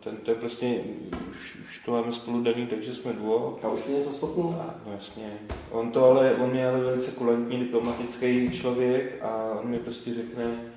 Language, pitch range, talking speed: Czech, 110-125 Hz, 175 wpm